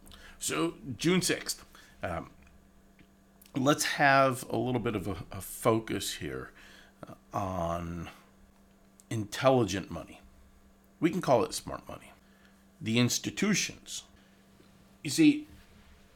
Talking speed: 100 wpm